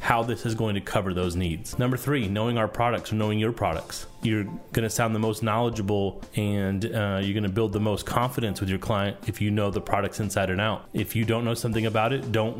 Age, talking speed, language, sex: 30-49, 240 wpm, English, male